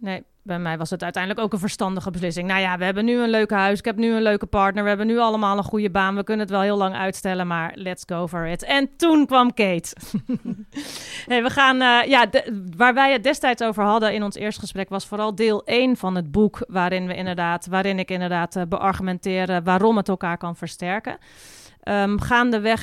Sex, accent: female, Dutch